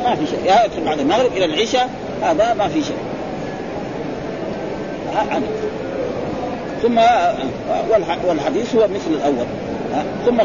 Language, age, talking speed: Arabic, 40-59, 150 wpm